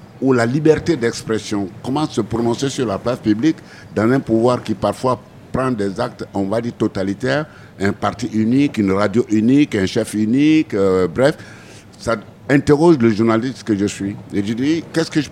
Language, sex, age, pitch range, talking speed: French, male, 60-79, 100-135 Hz, 185 wpm